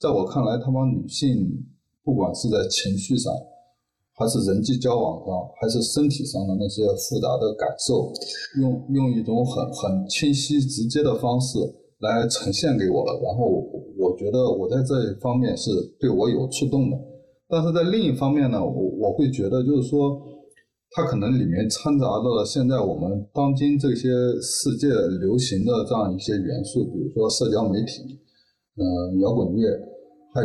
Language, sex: Chinese, male